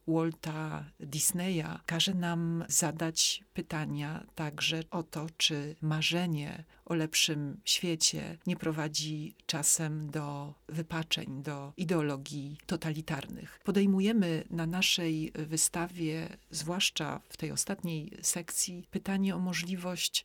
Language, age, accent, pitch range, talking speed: Polish, 40-59, native, 155-175 Hz, 100 wpm